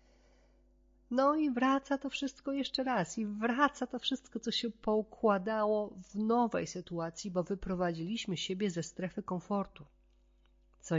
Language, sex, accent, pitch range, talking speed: Polish, female, native, 155-215 Hz, 130 wpm